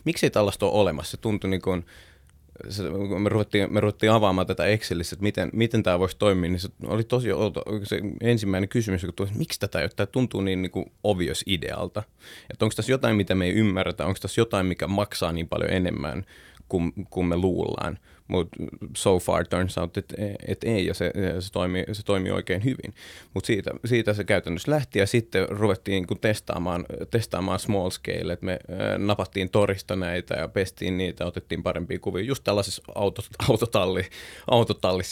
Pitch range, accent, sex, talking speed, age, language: 90-105 Hz, native, male, 180 wpm, 30-49, Finnish